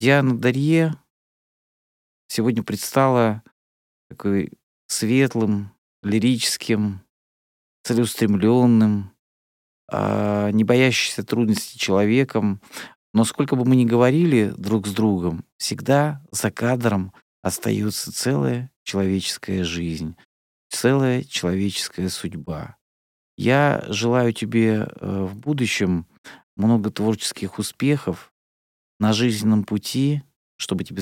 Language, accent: Russian, native